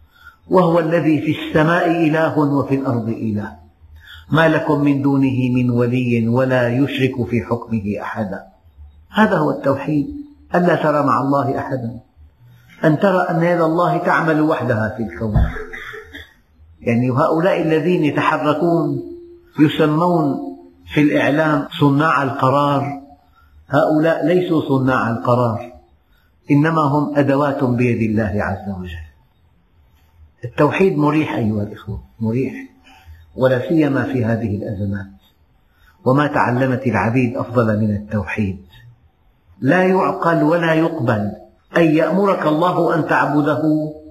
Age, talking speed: 50-69, 110 wpm